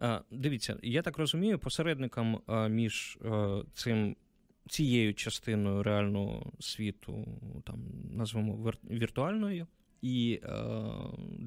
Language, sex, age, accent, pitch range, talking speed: Ukrainian, male, 20-39, native, 105-140 Hz, 85 wpm